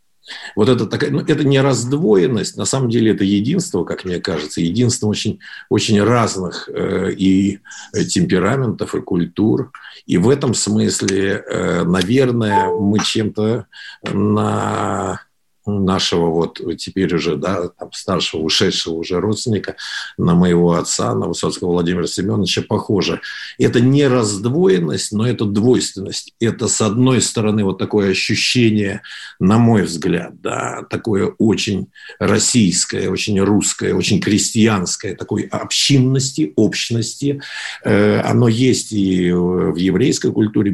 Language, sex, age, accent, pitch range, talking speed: Russian, male, 50-69, native, 100-125 Hz, 125 wpm